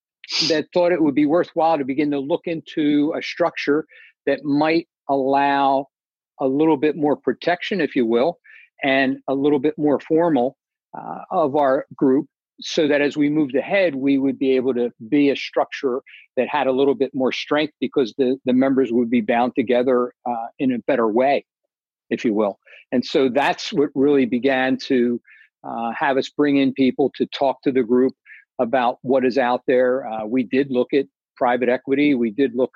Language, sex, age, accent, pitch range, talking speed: English, male, 50-69, American, 125-150 Hz, 190 wpm